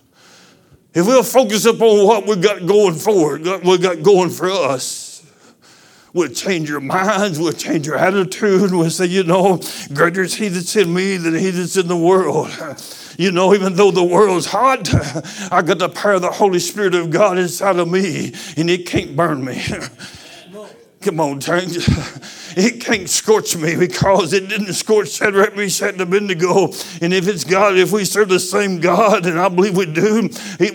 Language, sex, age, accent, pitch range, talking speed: English, male, 60-79, American, 180-205 Hz, 190 wpm